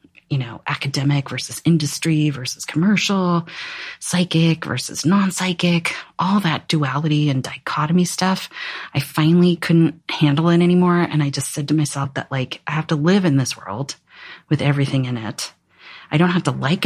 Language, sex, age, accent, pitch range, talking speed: English, female, 30-49, American, 140-165 Hz, 165 wpm